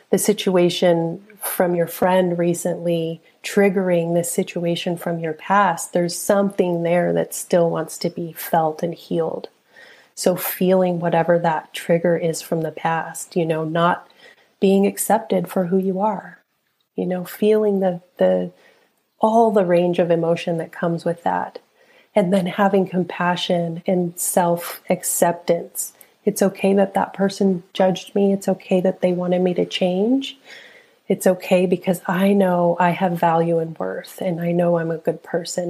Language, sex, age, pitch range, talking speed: English, female, 30-49, 170-195 Hz, 155 wpm